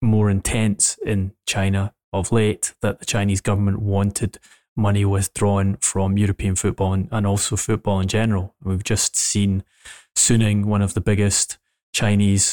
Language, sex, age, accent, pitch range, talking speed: English, male, 20-39, British, 100-110 Hz, 145 wpm